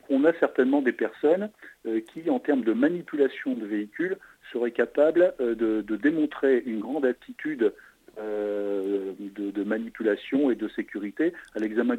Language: French